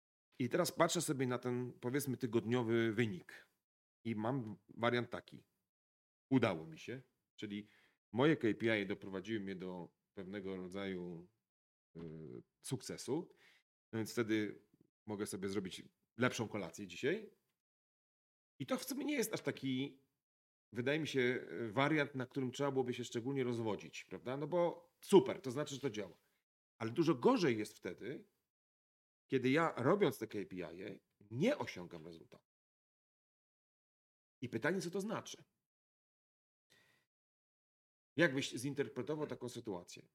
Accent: native